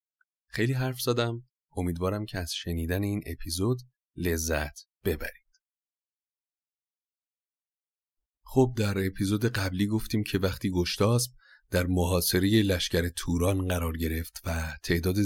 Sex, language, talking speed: male, Persian, 105 wpm